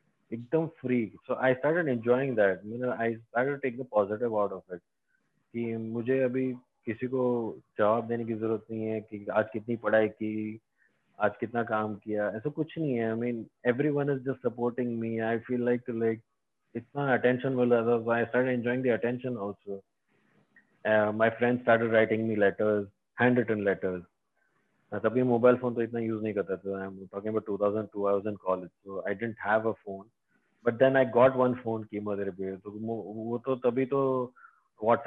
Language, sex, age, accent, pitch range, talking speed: English, male, 20-39, Indian, 110-125 Hz, 125 wpm